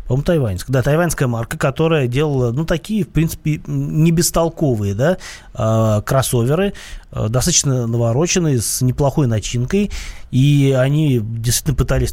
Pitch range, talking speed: 120-150 Hz, 115 wpm